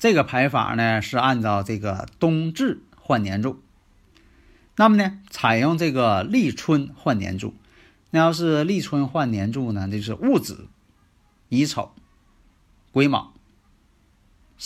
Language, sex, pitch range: Chinese, male, 100-150 Hz